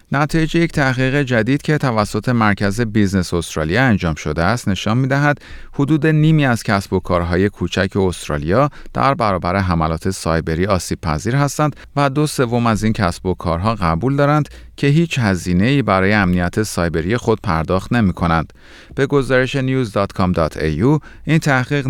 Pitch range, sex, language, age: 90-135 Hz, male, Persian, 40-59